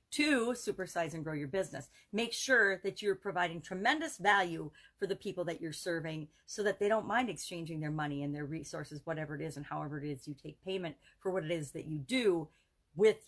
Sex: female